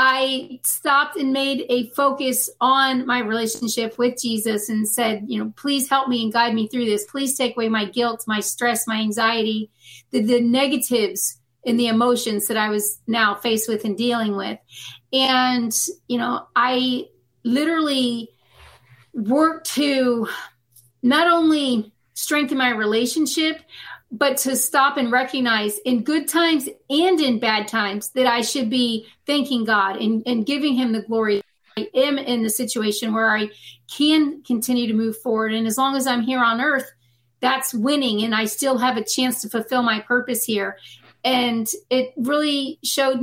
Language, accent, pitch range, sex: English, American, 220-260 Hz, female